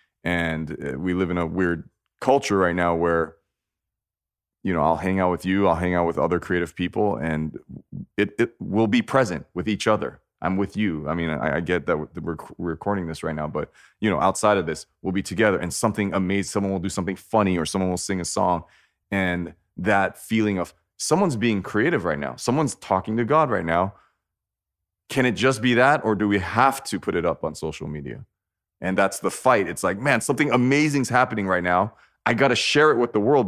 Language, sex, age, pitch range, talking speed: English, male, 30-49, 85-105 Hz, 220 wpm